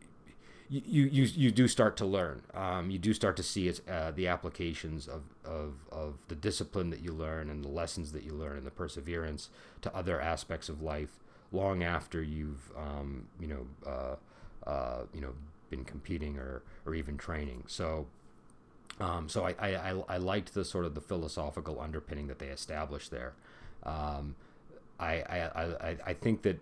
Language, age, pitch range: English, 30-49, 75-90 Hz